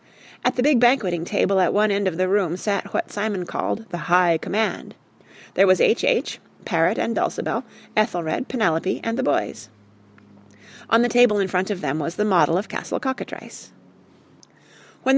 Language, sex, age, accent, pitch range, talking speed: English, female, 30-49, American, 175-245 Hz, 175 wpm